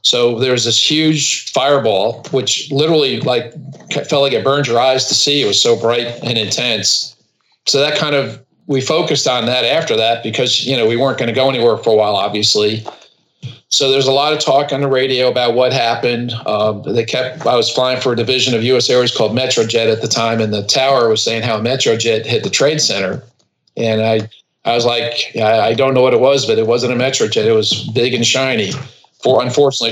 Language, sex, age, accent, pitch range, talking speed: English, male, 40-59, American, 115-135 Hz, 220 wpm